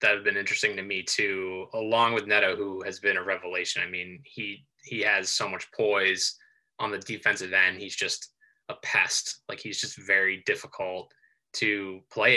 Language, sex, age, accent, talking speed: English, male, 20-39, American, 185 wpm